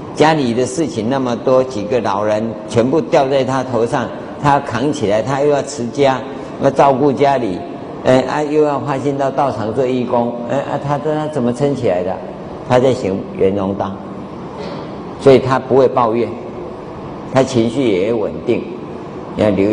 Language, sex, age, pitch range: Chinese, male, 50-69, 120-145 Hz